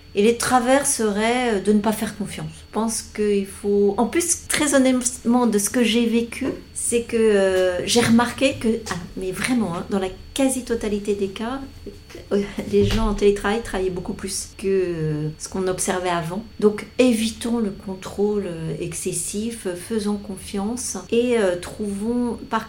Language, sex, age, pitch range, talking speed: French, female, 40-59, 185-230 Hz, 150 wpm